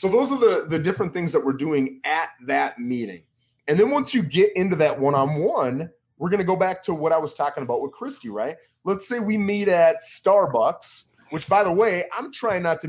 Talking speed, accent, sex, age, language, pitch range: 230 wpm, American, male, 30-49, English, 145-235 Hz